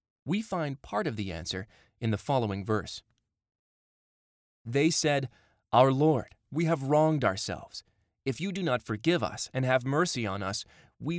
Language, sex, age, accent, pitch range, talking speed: English, male, 20-39, American, 105-135 Hz, 160 wpm